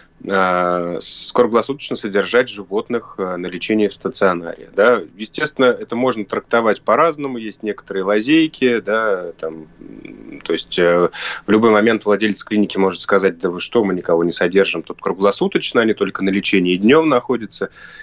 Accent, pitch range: native, 95-130 Hz